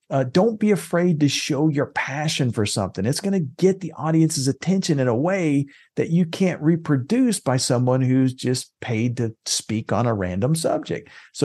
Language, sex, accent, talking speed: English, male, American, 190 wpm